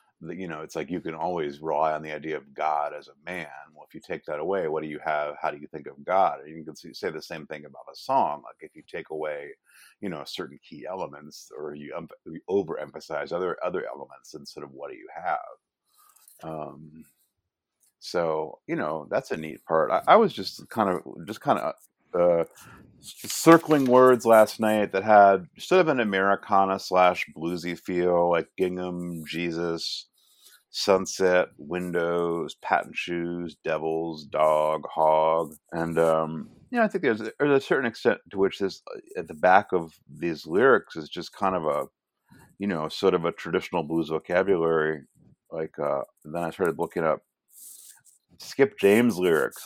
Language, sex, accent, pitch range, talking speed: English, male, American, 80-110 Hz, 180 wpm